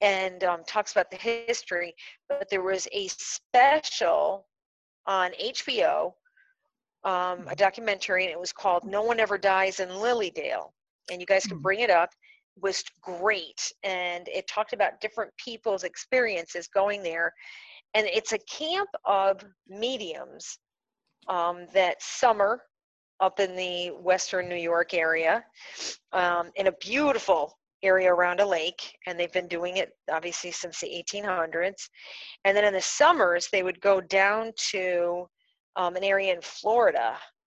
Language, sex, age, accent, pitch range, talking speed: English, female, 40-59, American, 175-215 Hz, 150 wpm